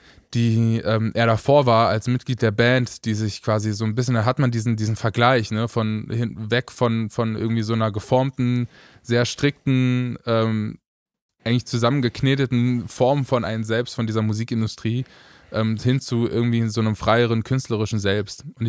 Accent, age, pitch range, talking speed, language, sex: German, 20-39, 110-130 Hz, 170 wpm, German, male